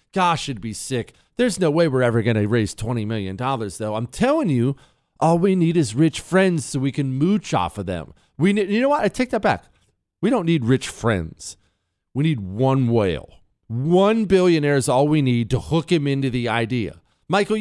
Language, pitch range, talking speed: English, 130-210 Hz, 210 wpm